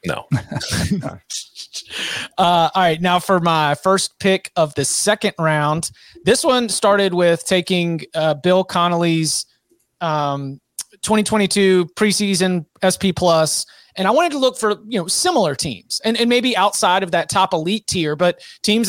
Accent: American